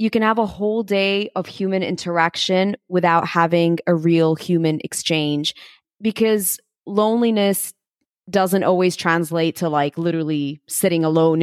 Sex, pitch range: female, 170-205 Hz